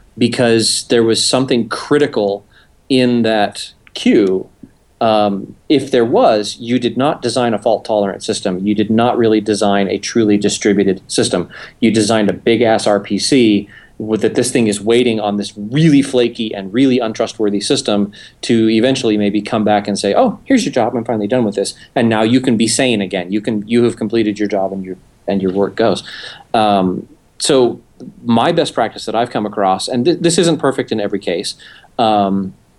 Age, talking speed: 30-49, 185 wpm